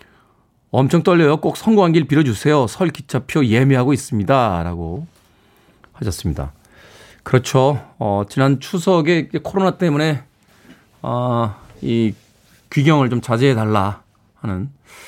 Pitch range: 100-140 Hz